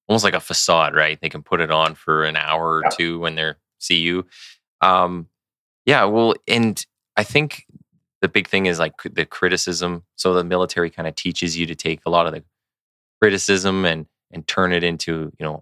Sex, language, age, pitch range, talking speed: male, English, 20-39, 80-90 Hz, 205 wpm